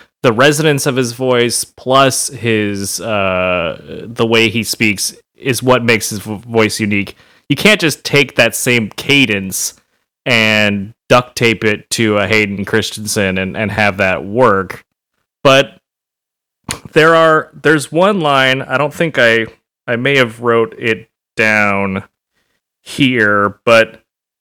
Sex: male